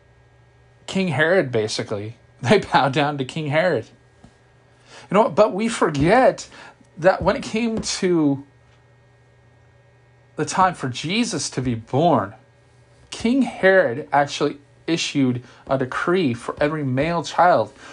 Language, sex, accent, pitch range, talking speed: English, male, American, 125-160 Hz, 125 wpm